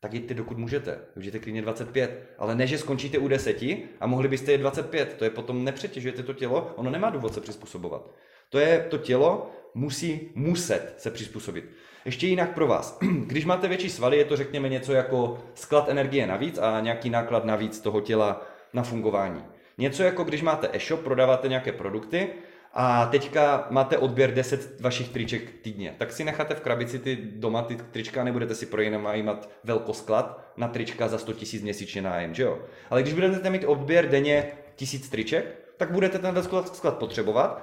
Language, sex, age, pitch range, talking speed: Czech, male, 20-39, 115-145 Hz, 185 wpm